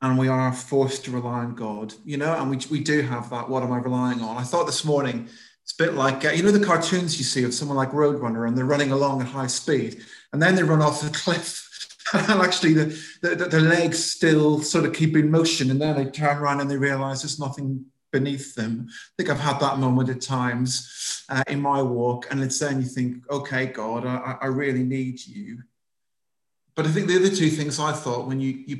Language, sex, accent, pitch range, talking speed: English, male, British, 125-150 Hz, 240 wpm